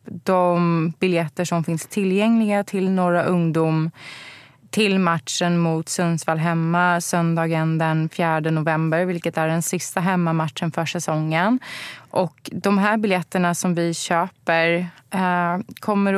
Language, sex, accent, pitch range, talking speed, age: English, female, Swedish, 165-185 Hz, 120 wpm, 20-39